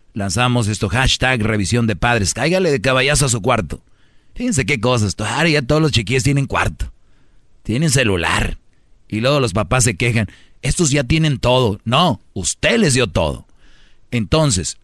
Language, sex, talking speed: Spanish, male, 160 wpm